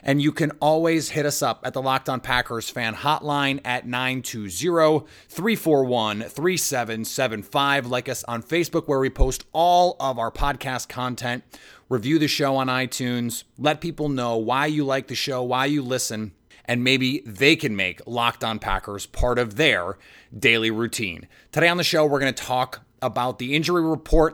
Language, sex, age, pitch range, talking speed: English, male, 30-49, 115-140 Hz, 170 wpm